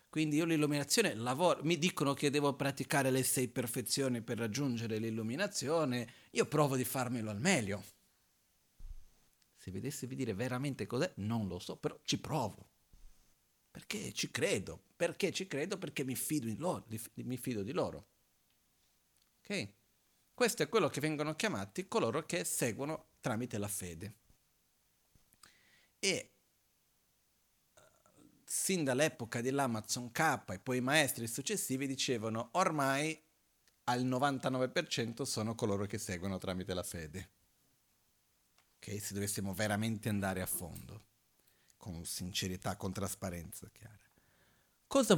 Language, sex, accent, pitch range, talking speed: Italian, male, native, 105-150 Hz, 125 wpm